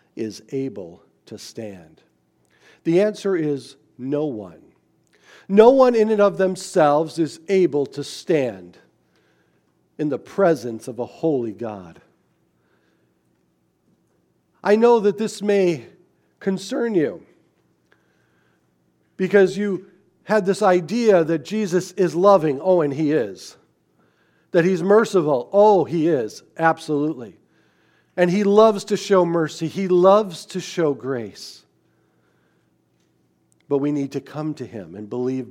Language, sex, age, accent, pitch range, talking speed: English, male, 50-69, American, 140-195 Hz, 125 wpm